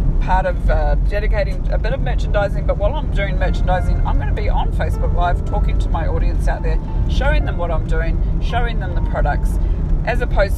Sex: female